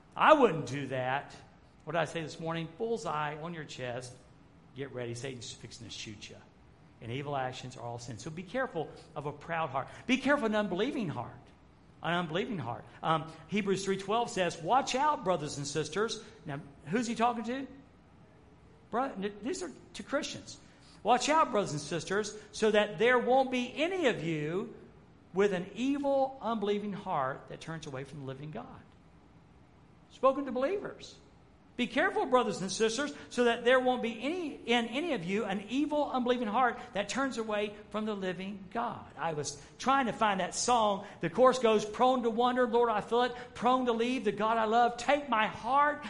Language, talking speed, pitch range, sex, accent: English, 185 wpm, 160-255 Hz, male, American